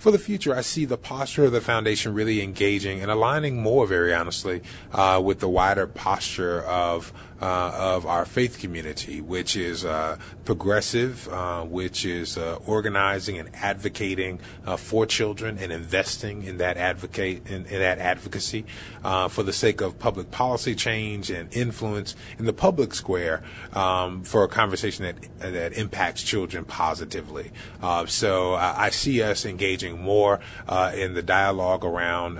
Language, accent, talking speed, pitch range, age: English, American, 160 wpm, 90-105 Hz, 30-49